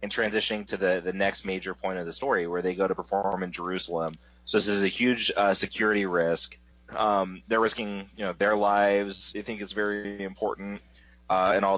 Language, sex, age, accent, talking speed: English, male, 30-49, American, 210 wpm